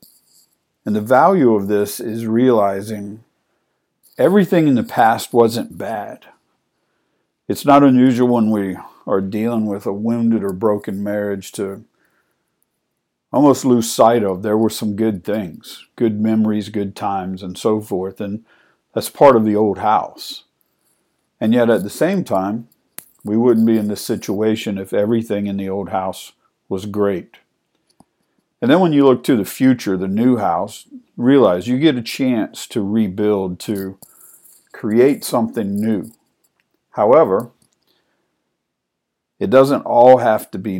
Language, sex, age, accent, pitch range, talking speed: English, male, 50-69, American, 100-120 Hz, 145 wpm